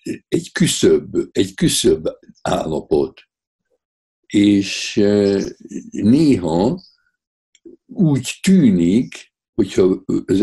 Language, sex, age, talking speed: Hungarian, male, 60-79, 60 wpm